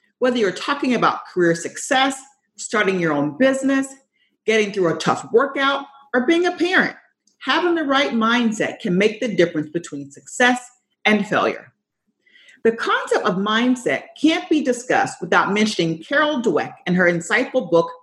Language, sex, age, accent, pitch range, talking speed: English, female, 40-59, American, 185-275 Hz, 155 wpm